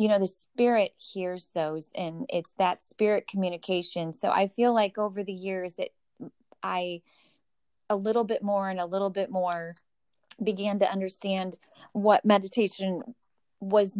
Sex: female